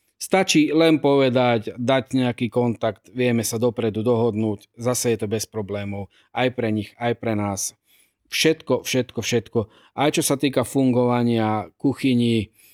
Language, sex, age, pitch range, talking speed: Slovak, male, 40-59, 110-135 Hz, 140 wpm